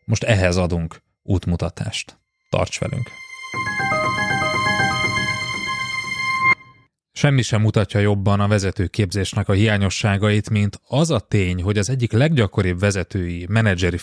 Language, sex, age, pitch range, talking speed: Hungarian, male, 30-49, 95-130 Hz, 105 wpm